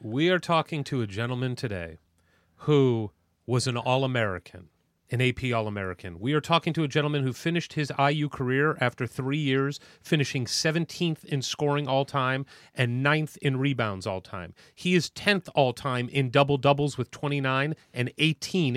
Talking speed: 155 wpm